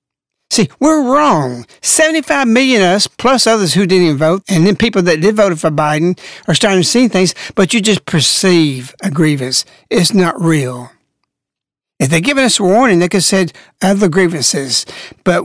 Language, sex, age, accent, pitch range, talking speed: English, male, 60-79, American, 165-215 Hz, 185 wpm